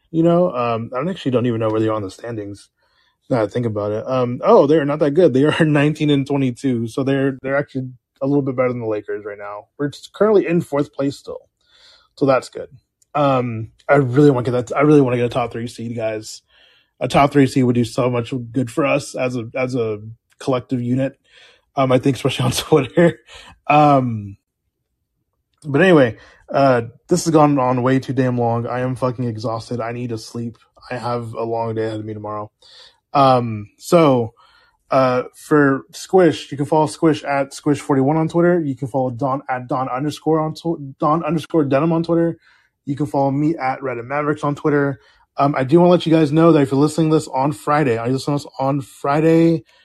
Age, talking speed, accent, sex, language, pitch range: 20-39, 215 wpm, American, male, English, 125-155 Hz